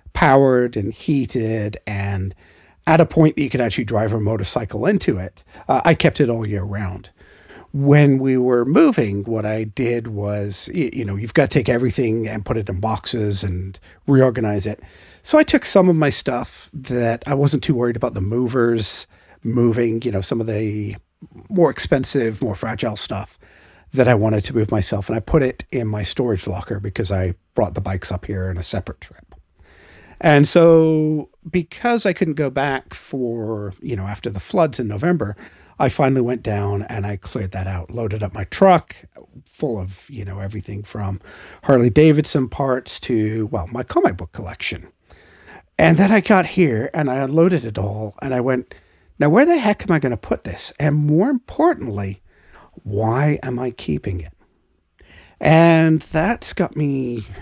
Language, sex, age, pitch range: English, male, 50-69, 100-140 Hz